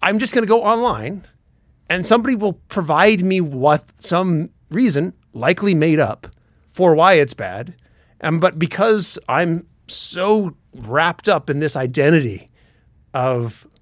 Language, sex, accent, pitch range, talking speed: English, male, American, 130-200 Hz, 140 wpm